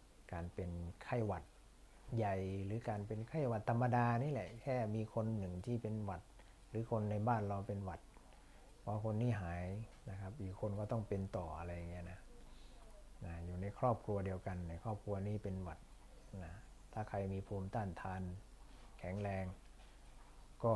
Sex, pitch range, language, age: male, 85-105 Hz, Thai, 60-79